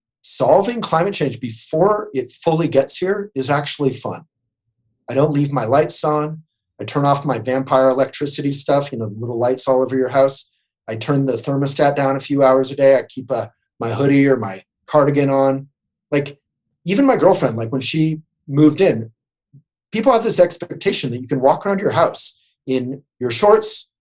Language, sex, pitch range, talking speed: English, male, 130-155 Hz, 180 wpm